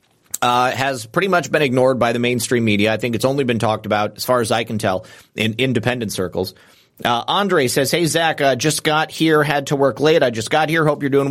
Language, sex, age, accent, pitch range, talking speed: English, male, 30-49, American, 120-155 Hz, 245 wpm